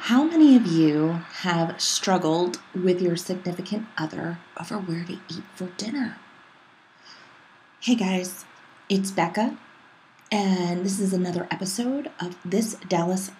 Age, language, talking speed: 30-49, English, 125 wpm